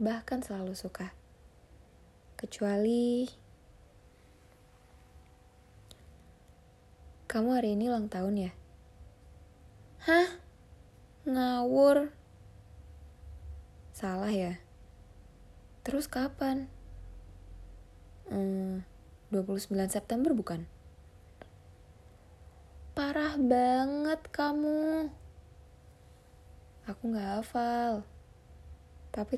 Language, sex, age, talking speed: Indonesian, female, 20-39, 55 wpm